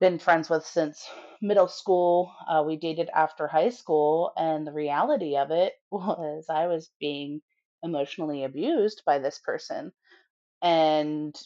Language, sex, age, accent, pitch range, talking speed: English, female, 30-49, American, 150-190 Hz, 140 wpm